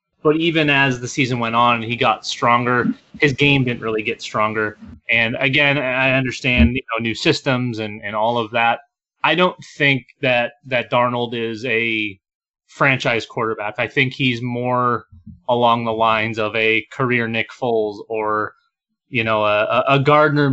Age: 30-49